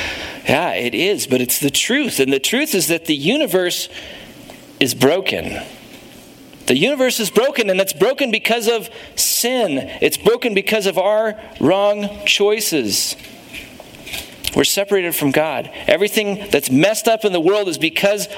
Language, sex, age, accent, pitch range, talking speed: English, male, 40-59, American, 155-225 Hz, 150 wpm